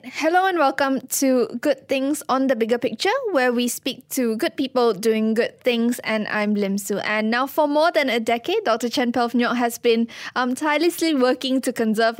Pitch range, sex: 225-265 Hz, female